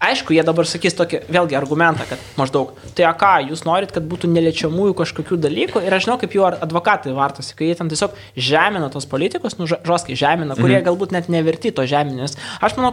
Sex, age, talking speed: male, 20-39, 200 wpm